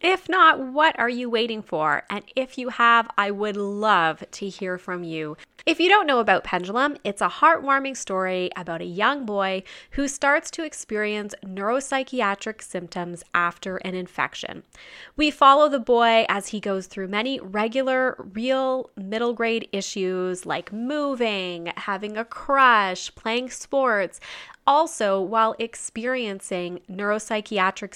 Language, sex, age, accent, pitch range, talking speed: English, female, 20-39, American, 190-270 Hz, 140 wpm